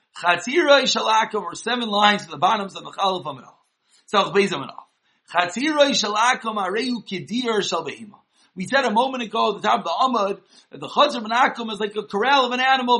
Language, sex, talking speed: English, male, 210 wpm